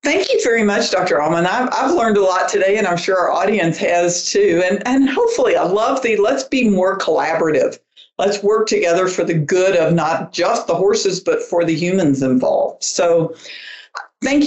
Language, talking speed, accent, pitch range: English, 195 wpm, American, 175-235 Hz